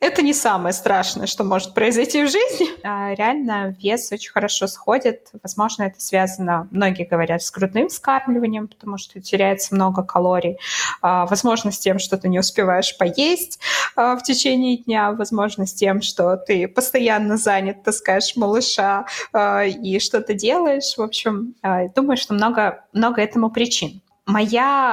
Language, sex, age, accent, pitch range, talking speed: Russian, female, 20-39, native, 190-235 Hz, 140 wpm